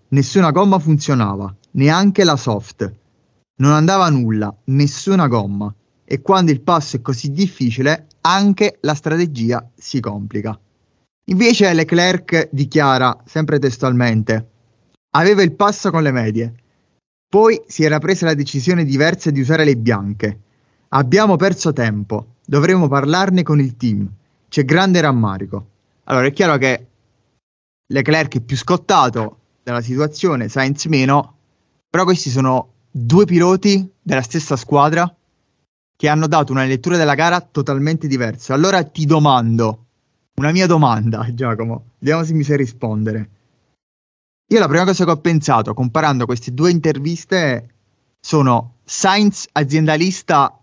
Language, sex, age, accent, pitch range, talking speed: Italian, male, 20-39, native, 120-165 Hz, 130 wpm